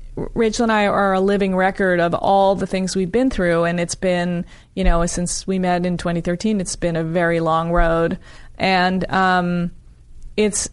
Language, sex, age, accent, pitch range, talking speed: English, female, 30-49, American, 170-195 Hz, 185 wpm